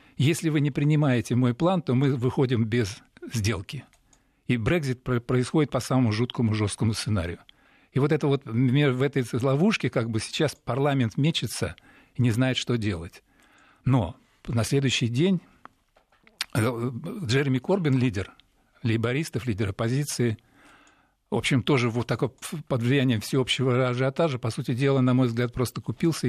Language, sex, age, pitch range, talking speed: Russian, male, 50-69, 115-145 Hz, 140 wpm